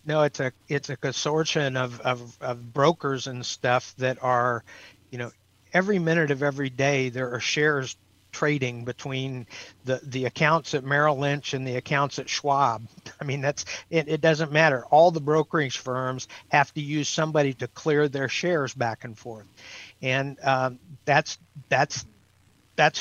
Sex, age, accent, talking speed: male, 50-69, American, 165 wpm